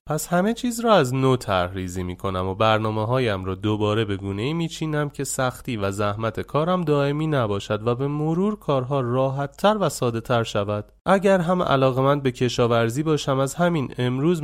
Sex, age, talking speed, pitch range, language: male, 30-49, 180 wpm, 100-140 Hz, Persian